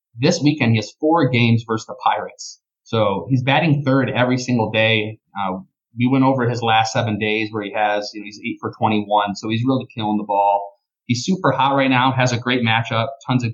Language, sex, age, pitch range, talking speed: English, male, 20-39, 115-140 Hz, 220 wpm